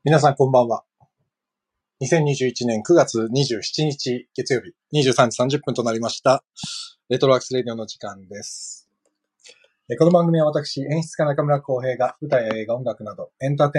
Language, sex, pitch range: Japanese, male, 115-150 Hz